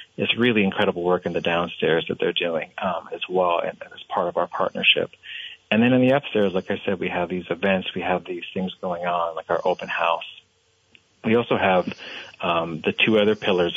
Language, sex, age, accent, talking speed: English, male, 40-59, American, 220 wpm